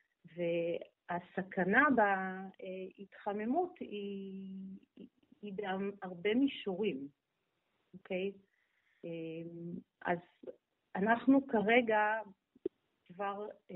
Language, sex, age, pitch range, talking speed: Hebrew, female, 40-59, 175-210 Hz, 55 wpm